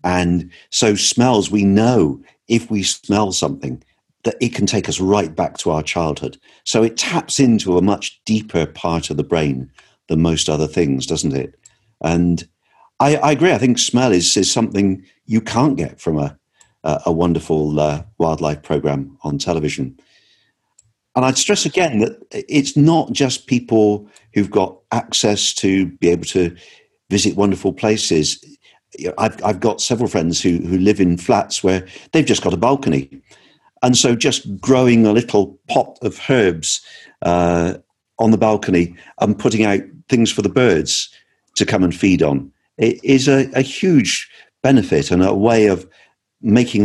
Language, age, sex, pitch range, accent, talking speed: English, 50-69, male, 85-115 Hz, British, 165 wpm